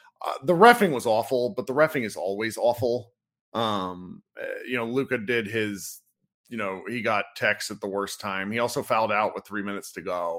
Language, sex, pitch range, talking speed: English, male, 100-135 Hz, 200 wpm